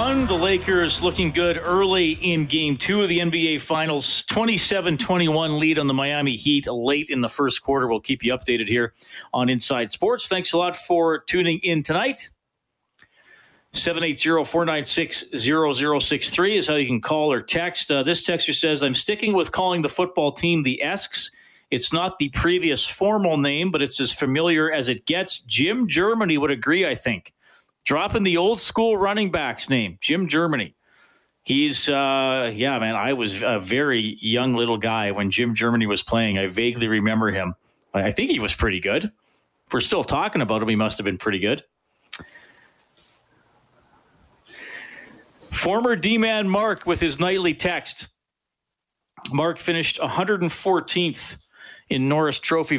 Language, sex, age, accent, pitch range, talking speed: English, male, 40-59, American, 125-175 Hz, 160 wpm